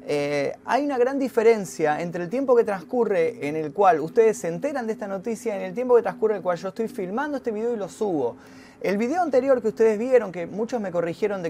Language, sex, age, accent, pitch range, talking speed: Spanish, male, 20-39, Argentinian, 190-255 Hz, 245 wpm